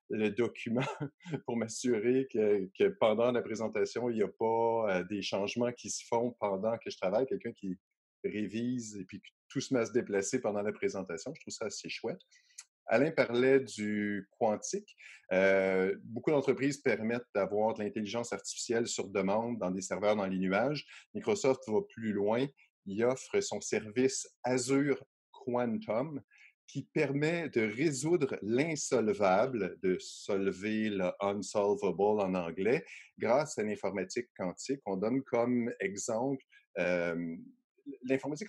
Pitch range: 100-135 Hz